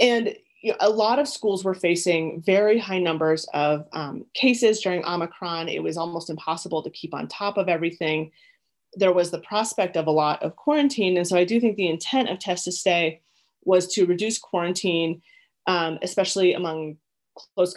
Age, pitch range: 30-49, 160-195 Hz